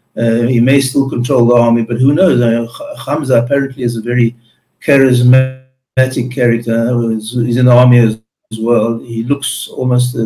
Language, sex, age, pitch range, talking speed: English, male, 60-79, 120-140 Hz, 170 wpm